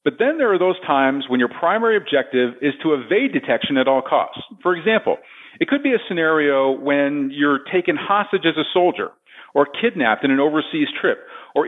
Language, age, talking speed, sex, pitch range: English, 40-59, 195 wpm, male, 135-200 Hz